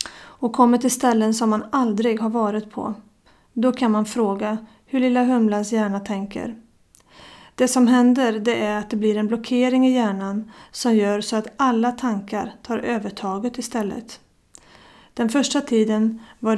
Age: 30-49